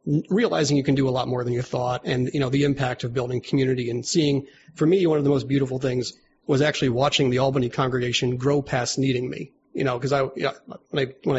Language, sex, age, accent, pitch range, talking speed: English, male, 40-59, American, 125-140 Hz, 250 wpm